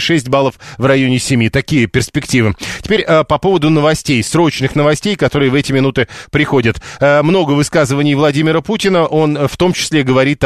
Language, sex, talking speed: Russian, male, 155 wpm